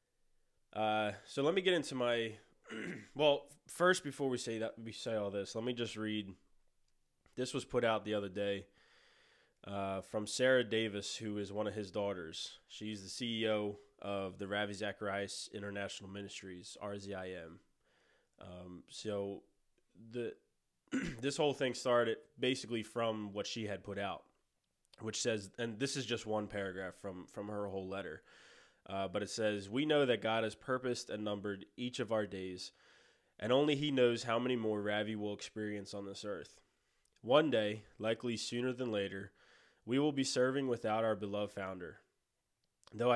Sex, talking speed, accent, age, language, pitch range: male, 165 wpm, American, 20-39, English, 100-120 Hz